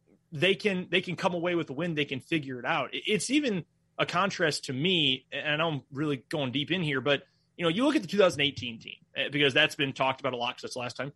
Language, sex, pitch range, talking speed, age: English, male, 130-165 Hz, 260 wpm, 30-49